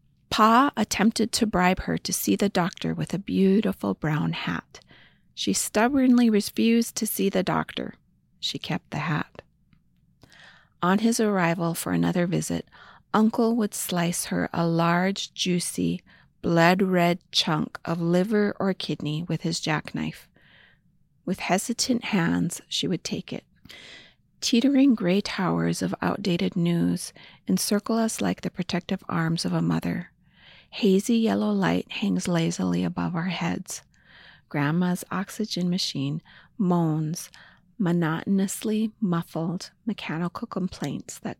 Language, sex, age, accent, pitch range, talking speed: English, female, 40-59, American, 160-205 Hz, 125 wpm